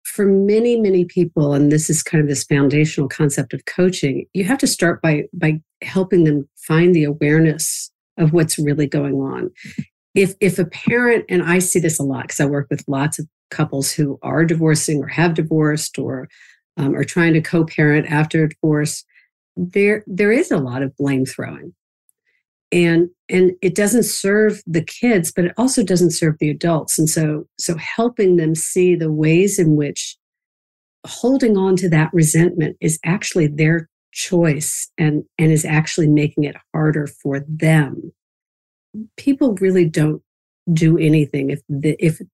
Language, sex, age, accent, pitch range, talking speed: English, female, 50-69, American, 150-180 Hz, 170 wpm